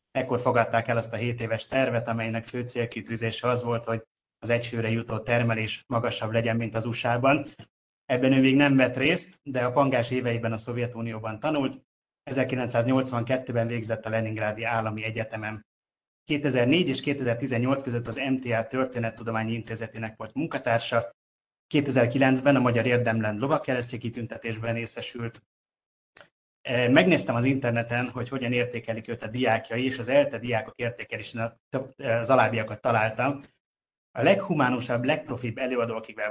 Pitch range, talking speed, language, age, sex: 115-130 Hz, 135 wpm, Hungarian, 30-49, male